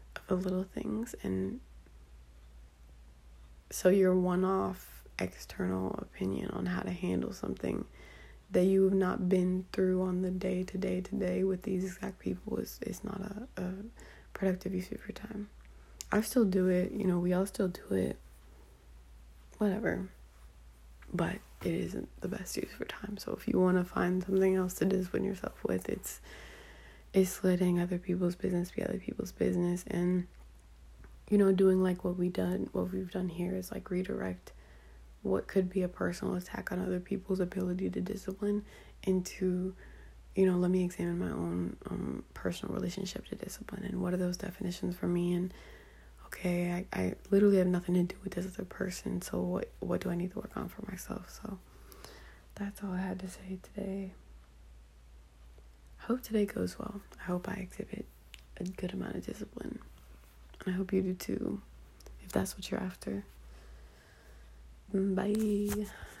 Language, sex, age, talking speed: English, female, 20-39, 170 wpm